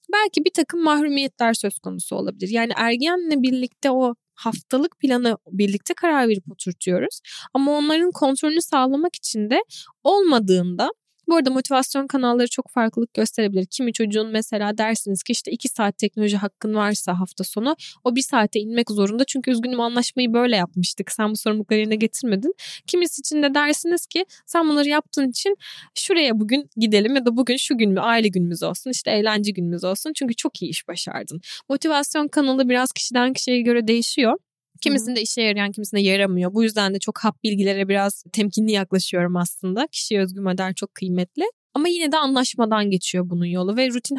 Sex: female